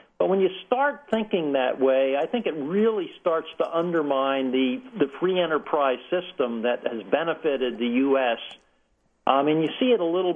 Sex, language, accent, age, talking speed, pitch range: male, English, American, 50-69, 185 wpm, 135-180 Hz